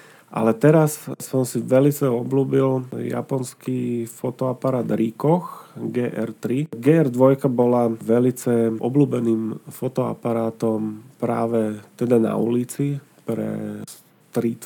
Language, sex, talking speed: Slovak, male, 85 wpm